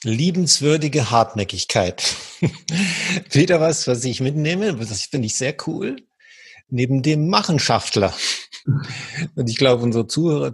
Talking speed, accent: 115 wpm, German